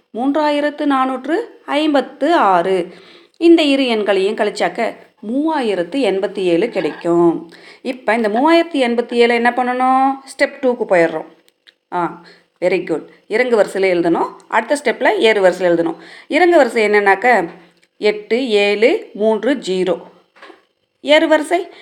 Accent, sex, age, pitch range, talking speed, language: native, female, 30-49, 200-290 Hz, 100 wpm, Tamil